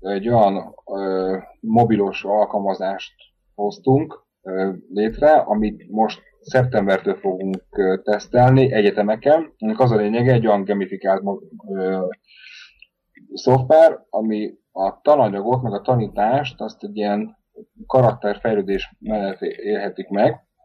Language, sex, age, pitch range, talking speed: Hungarian, male, 30-49, 95-130 Hz, 105 wpm